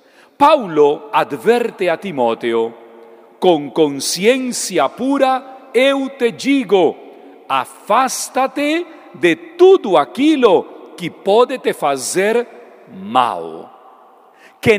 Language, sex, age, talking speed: Portuguese, male, 40-59, 80 wpm